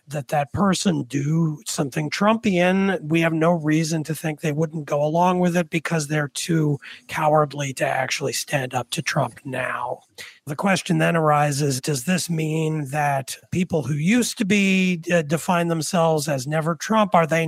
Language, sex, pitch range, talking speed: English, male, 145-180 Hz, 170 wpm